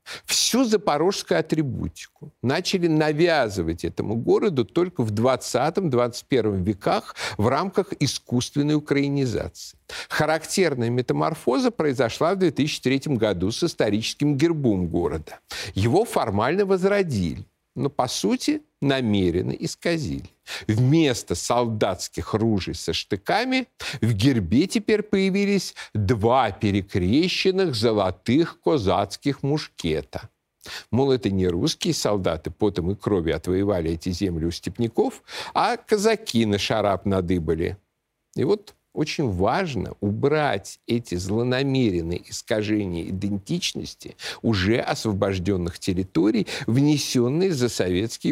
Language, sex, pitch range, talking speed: Russian, male, 100-150 Hz, 100 wpm